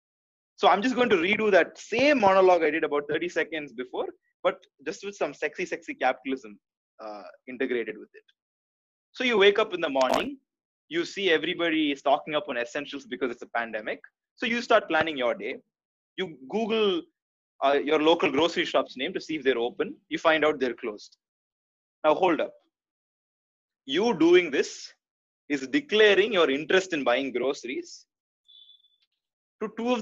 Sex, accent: male, native